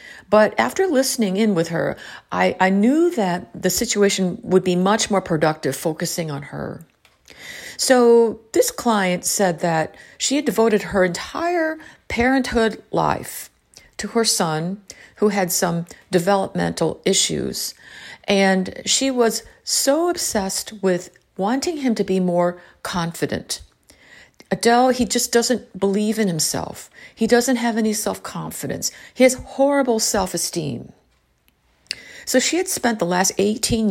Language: English